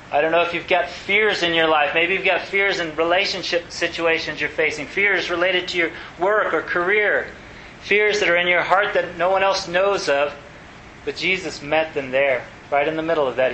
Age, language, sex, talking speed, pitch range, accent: 30-49, English, male, 215 wpm, 150-185 Hz, American